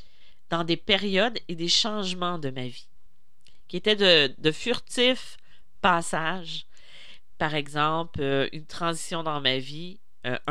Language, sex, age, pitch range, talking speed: French, female, 40-59, 135-175 Hz, 135 wpm